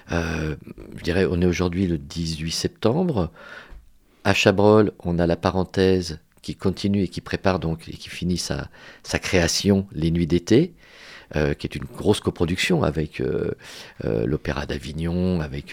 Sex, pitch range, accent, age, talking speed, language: male, 80-100 Hz, French, 50-69, 160 wpm, French